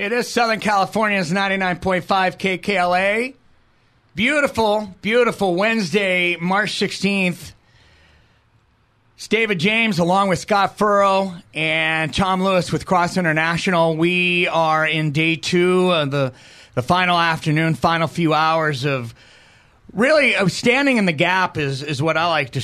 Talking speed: 135 wpm